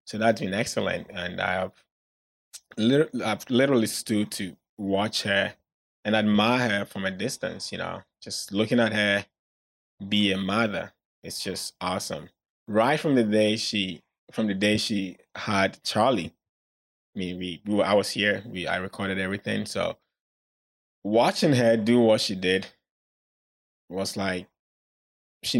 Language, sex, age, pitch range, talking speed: English, male, 20-39, 90-105 Hz, 150 wpm